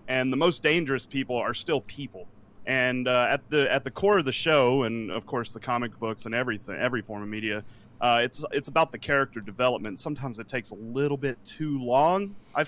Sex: male